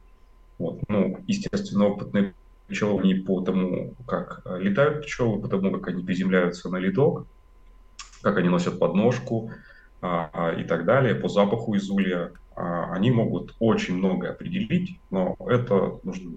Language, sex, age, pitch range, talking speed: Russian, male, 30-49, 90-120 Hz, 140 wpm